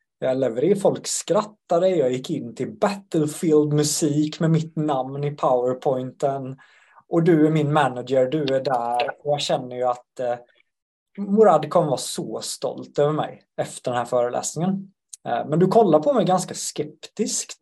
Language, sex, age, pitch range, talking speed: Swedish, male, 20-39, 145-190 Hz, 160 wpm